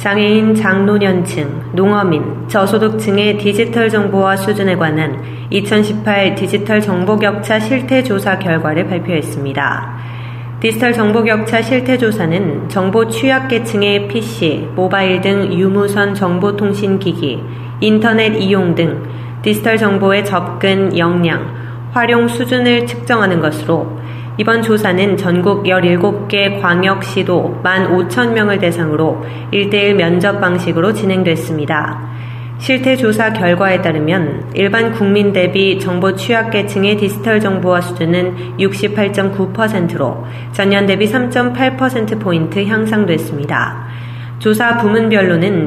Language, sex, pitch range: Korean, female, 160-210 Hz